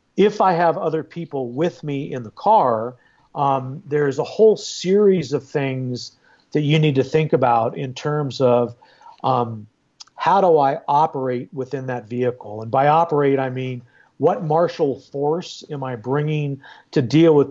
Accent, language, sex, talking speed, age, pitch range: American, English, male, 165 wpm, 50-69, 125-160 Hz